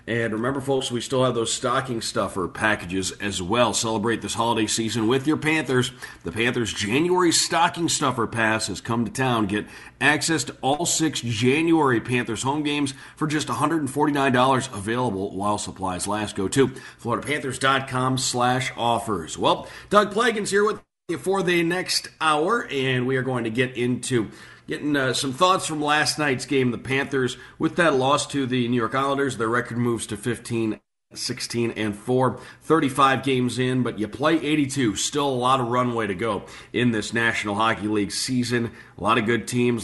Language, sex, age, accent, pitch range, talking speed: English, male, 40-59, American, 115-140 Hz, 175 wpm